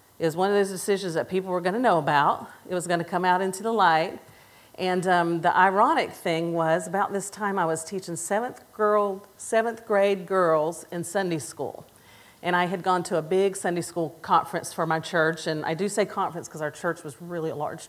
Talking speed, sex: 225 wpm, female